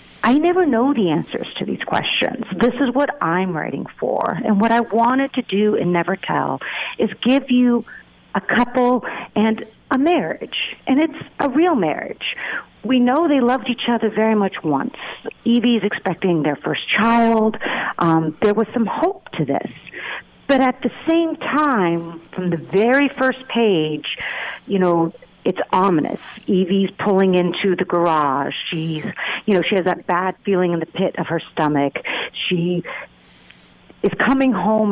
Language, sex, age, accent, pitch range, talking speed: English, female, 50-69, American, 175-240 Hz, 160 wpm